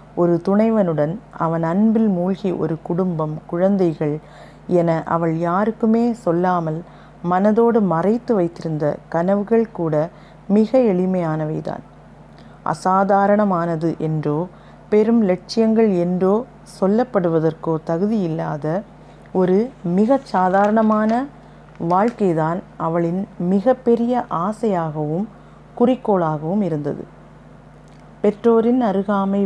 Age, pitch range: 30-49, 160-205 Hz